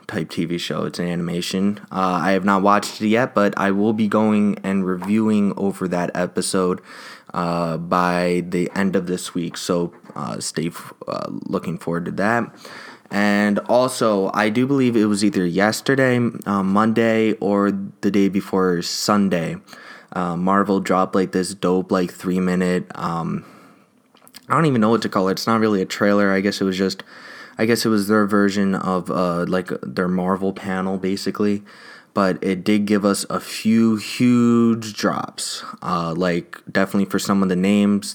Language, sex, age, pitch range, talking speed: English, male, 20-39, 95-105 Hz, 175 wpm